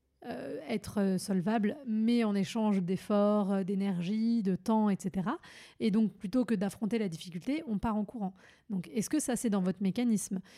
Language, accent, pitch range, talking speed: French, French, 195-235 Hz, 170 wpm